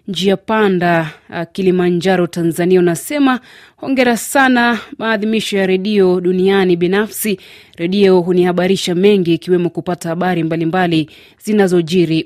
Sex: female